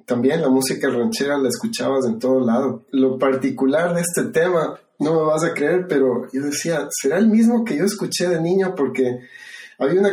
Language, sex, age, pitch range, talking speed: Spanish, male, 30-49, 130-160 Hz, 195 wpm